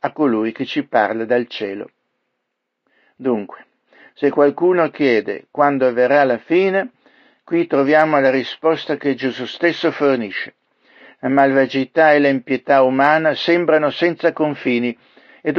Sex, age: male, 60-79